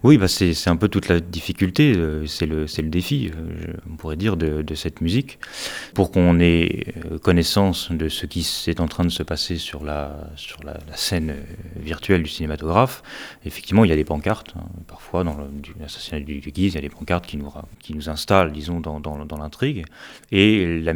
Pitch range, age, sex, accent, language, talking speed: 75-95 Hz, 30-49, male, French, French, 225 wpm